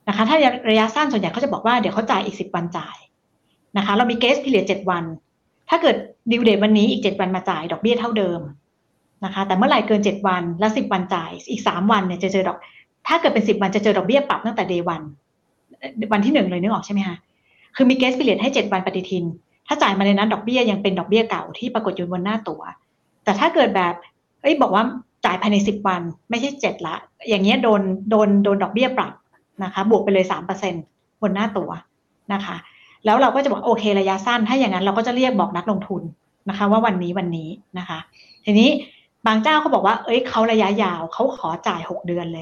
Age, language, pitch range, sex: 60-79, Thai, 185-230 Hz, female